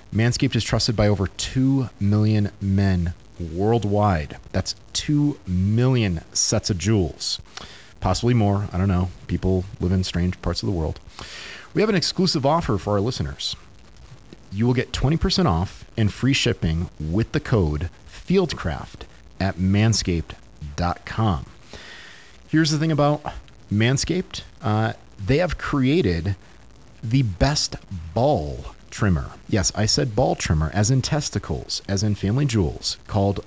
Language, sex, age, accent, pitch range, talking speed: English, male, 40-59, American, 90-125 Hz, 135 wpm